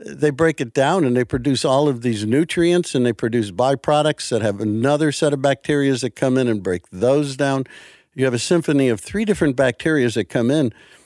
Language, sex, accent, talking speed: English, male, American, 210 wpm